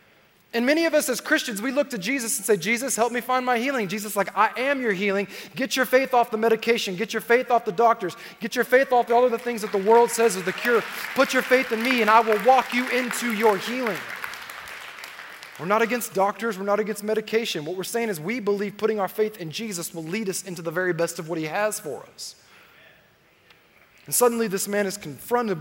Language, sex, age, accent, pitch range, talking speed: English, male, 20-39, American, 170-230 Hz, 240 wpm